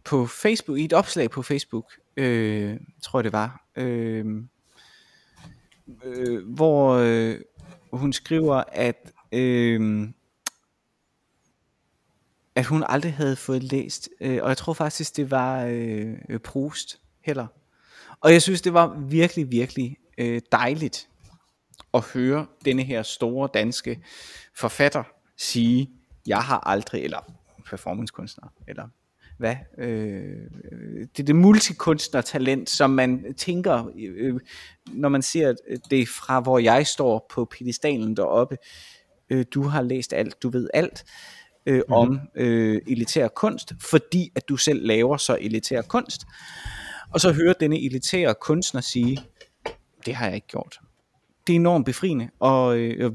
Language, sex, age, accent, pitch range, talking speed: Danish, male, 30-49, native, 120-150 Hz, 125 wpm